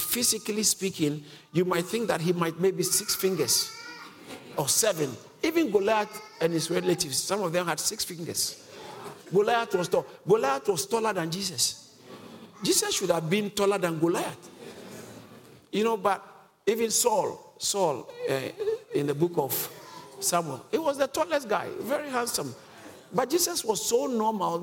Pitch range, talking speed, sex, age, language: 170-225 Hz, 155 wpm, male, 50-69, English